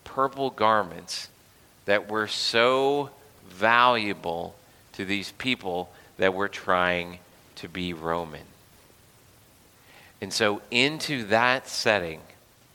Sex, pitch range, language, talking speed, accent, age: male, 110-140 Hz, English, 95 wpm, American, 30-49